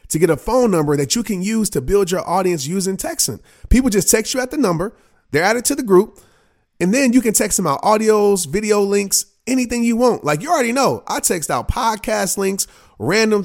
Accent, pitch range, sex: American, 140-200 Hz, male